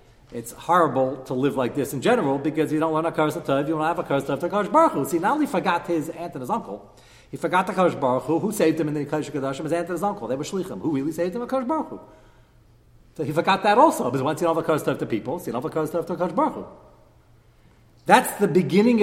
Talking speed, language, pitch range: 250 wpm, English, 140-205 Hz